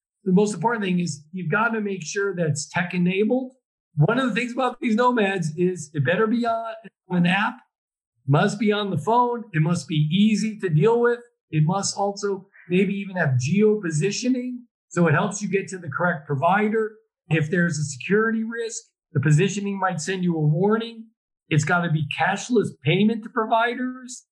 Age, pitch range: 50-69, 155-210 Hz